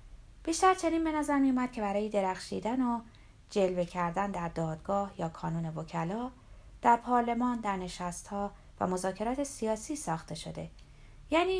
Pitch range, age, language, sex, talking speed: 175-250 Hz, 30-49, Persian, female, 140 wpm